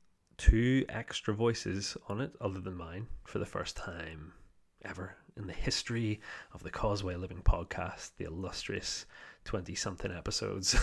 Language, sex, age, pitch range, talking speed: English, male, 20-39, 90-110 Hz, 145 wpm